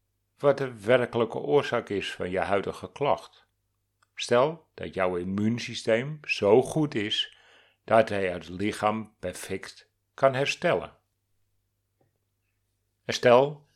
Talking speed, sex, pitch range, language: 110 wpm, male, 100-120 Hz, Dutch